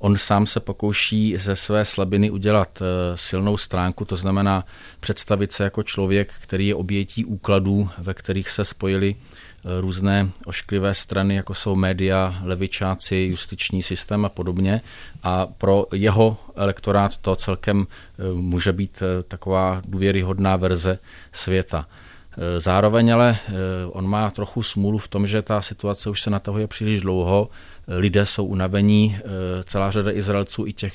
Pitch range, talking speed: 95-100 Hz, 140 wpm